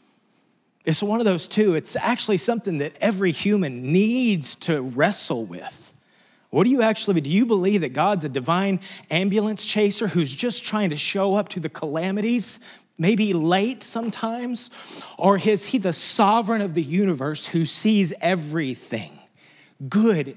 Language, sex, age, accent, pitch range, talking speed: English, male, 30-49, American, 150-210 Hz, 155 wpm